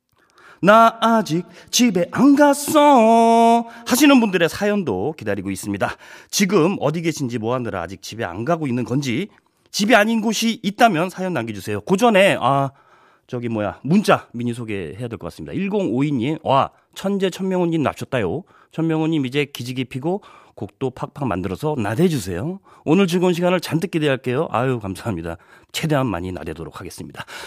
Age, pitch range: 40-59, 120-195 Hz